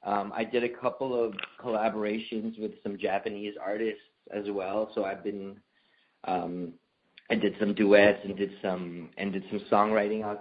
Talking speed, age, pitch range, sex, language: 165 wpm, 20-39, 100-120 Hz, male, English